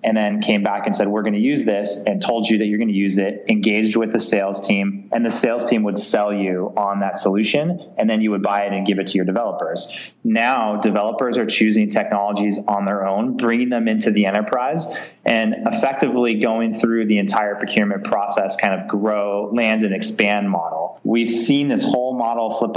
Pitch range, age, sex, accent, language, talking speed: 100-120 Hz, 20-39, male, American, English, 215 wpm